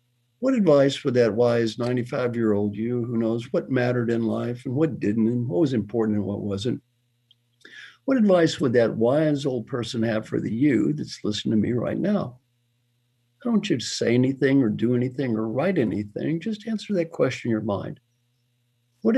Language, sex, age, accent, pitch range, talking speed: English, male, 60-79, American, 115-145 Hz, 190 wpm